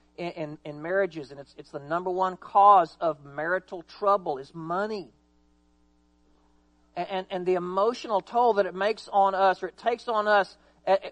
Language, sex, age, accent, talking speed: English, male, 40-59, American, 180 wpm